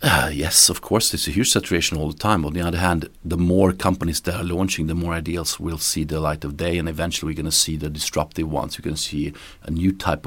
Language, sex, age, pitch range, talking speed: English, male, 40-59, 80-95 Hz, 270 wpm